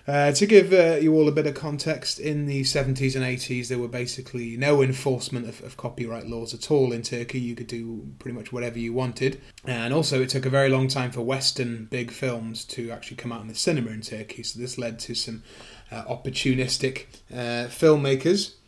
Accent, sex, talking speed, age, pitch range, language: British, male, 210 wpm, 30-49, 120-140 Hz, English